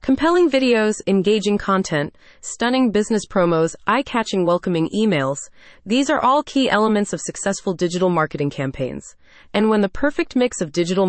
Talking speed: 145 wpm